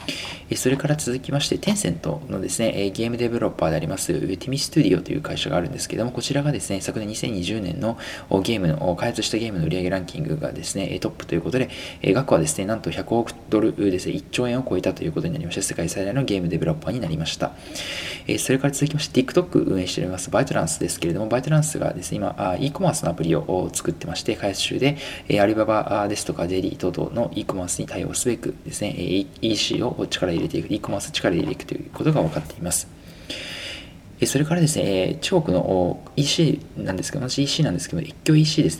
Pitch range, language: 100-145 Hz, Japanese